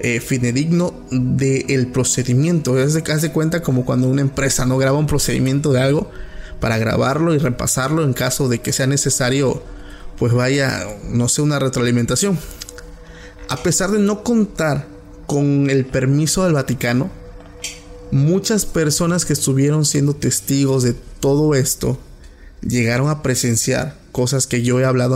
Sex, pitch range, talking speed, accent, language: male, 125-145 Hz, 150 wpm, Venezuelan, Spanish